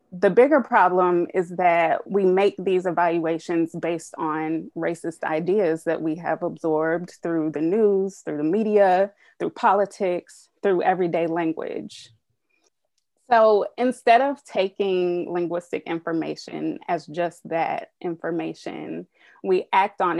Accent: American